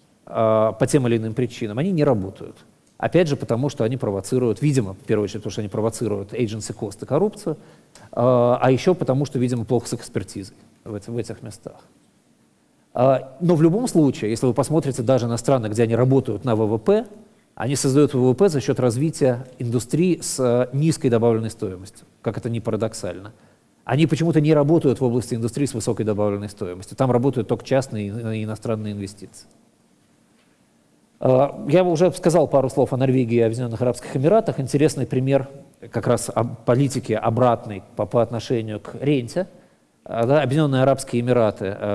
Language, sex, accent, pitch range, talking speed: Russian, male, native, 110-140 Hz, 155 wpm